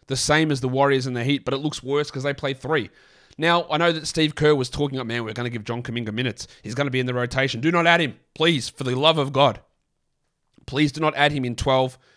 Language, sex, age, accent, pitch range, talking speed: English, male, 20-39, Australian, 120-145 Hz, 285 wpm